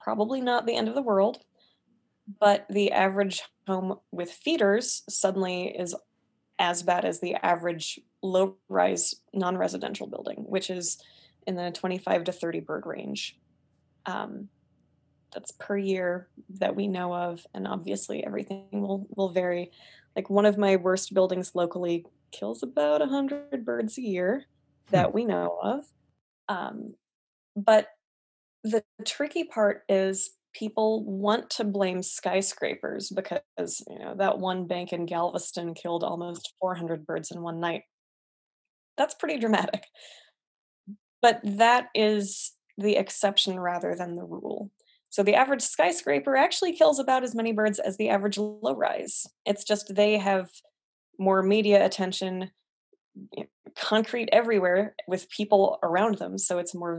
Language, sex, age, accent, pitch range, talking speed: English, female, 20-39, American, 180-215 Hz, 140 wpm